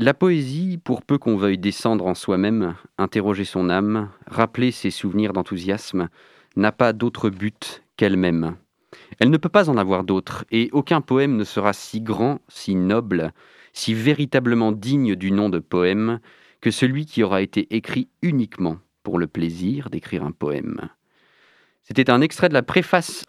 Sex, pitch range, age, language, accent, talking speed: male, 95-125 Hz, 40-59, French, French, 165 wpm